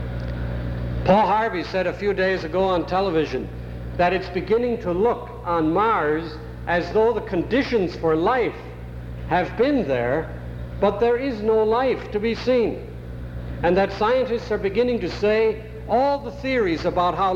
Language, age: English, 60-79